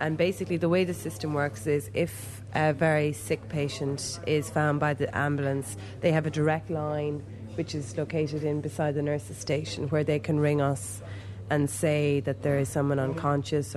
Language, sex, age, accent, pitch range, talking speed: English, female, 30-49, Irish, 130-150 Hz, 190 wpm